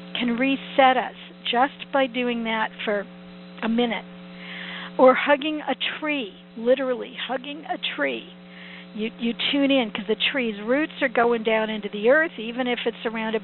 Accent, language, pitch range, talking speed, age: American, English, 195-255 Hz, 160 wpm, 50-69